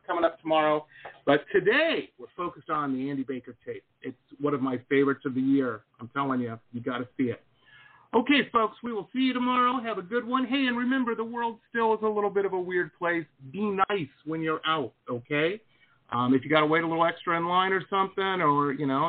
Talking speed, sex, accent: 235 wpm, male, American